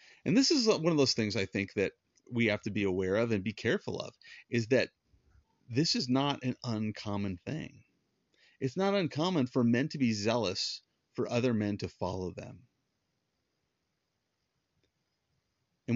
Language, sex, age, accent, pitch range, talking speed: English, male, 30-49, American, 105-130 Hz, 160 wpm